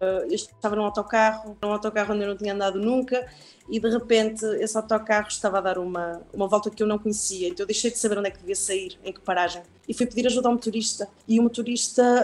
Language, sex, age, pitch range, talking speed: Portuguese, female, 20-39, 185-230 Hz, 245 wpm